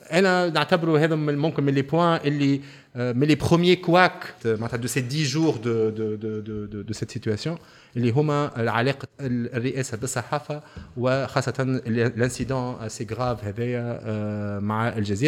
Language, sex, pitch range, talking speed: French, male, 110-140 Hz, 105 wpm